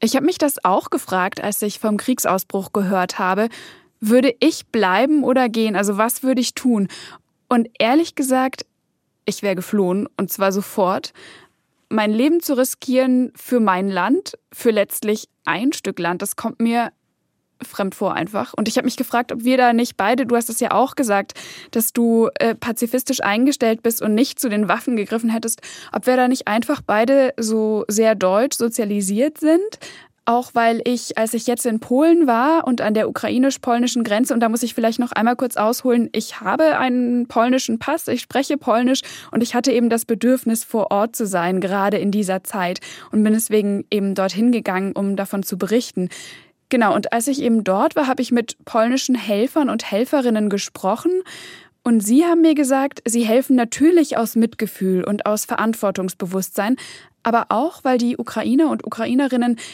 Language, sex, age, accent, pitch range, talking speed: German, female, 10-29, German, 210-260 Hz, 180 wpm